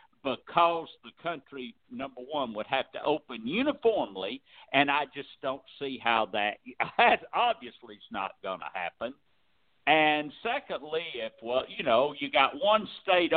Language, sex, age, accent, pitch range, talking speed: English, male, 60-79, American, 115-160 Hz, 155 wpm